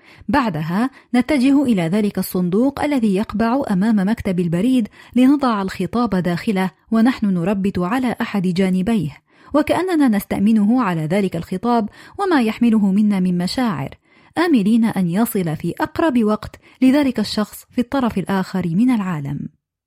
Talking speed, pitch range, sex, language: 125 wpm, 190-250 Hz, female, Arabic